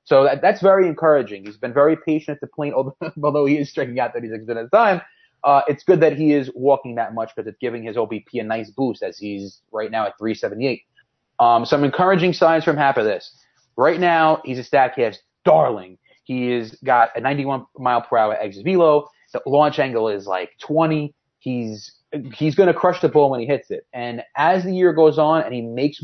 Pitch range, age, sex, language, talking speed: 120-160 Hz, 30-49, male, English, 220 wpm